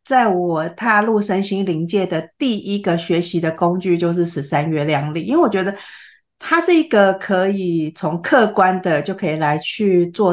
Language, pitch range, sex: Chinese, 175-220 Hz, female